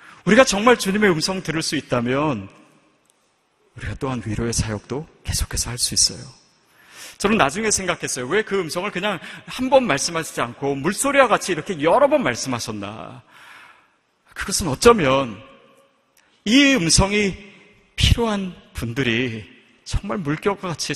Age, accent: 40-59, native